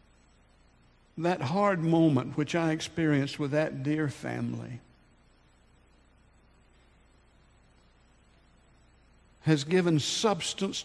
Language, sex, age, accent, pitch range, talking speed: English, male, 60-79, American, 120-175 Hz, 70 wpm